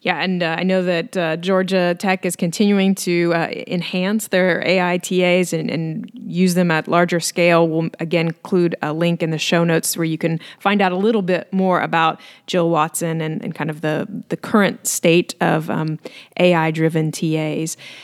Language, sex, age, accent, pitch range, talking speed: English, female, 30-49, American, 170-200 Hz, 190 wpm